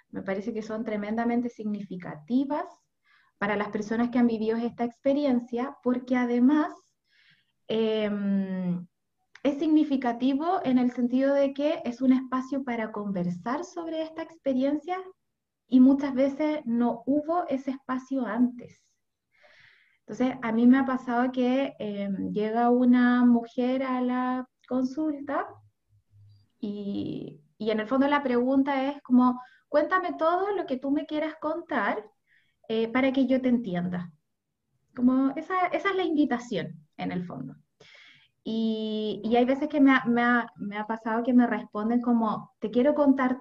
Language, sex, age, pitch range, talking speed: Spanish, female, 20-39, 215-275 Hz, 145 wpm